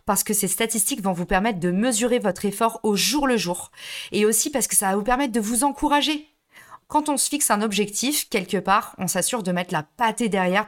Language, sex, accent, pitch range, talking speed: French, female, French, 190-245 Hz, 230 wpm